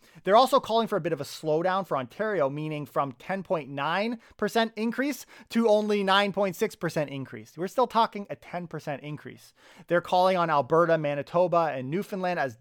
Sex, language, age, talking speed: male, English, 30-49, 155 wpm